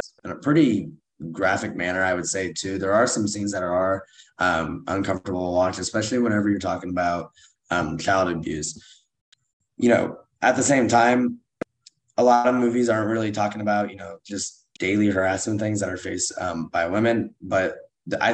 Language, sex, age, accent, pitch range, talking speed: English, male, 20-39, American, 95-120 Hz, 180 wpm